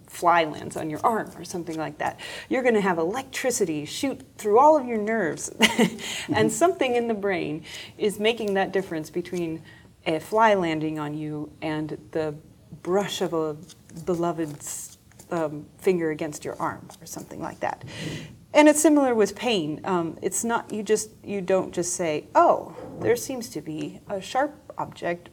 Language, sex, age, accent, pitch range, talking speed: Swedish, female, 30-49, American, 165-230 Hz, 170 wpm